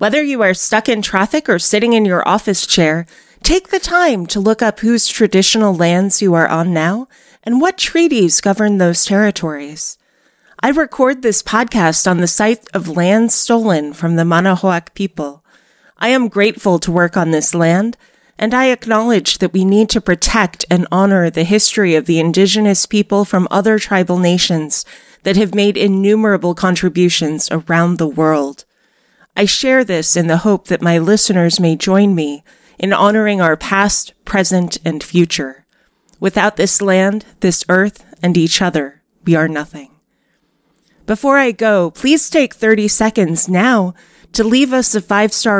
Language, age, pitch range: English, 30-49, 175-220 Hz